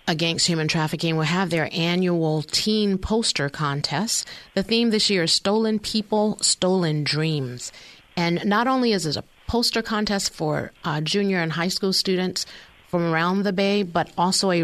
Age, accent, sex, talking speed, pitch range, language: 40-59, American, female, 170 wpm, 155-195 Hz, English